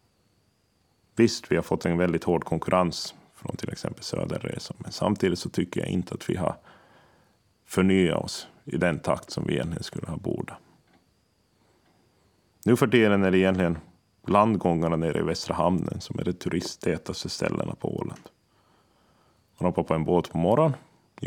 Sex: male